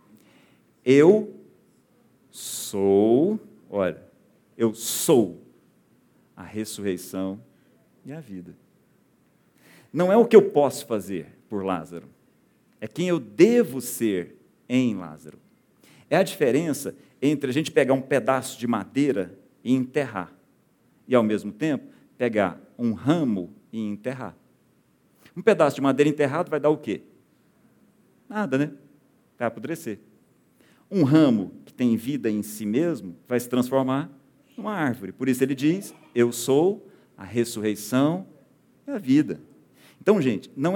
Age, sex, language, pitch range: 50-69, male, Portuguese, 110-145 Hz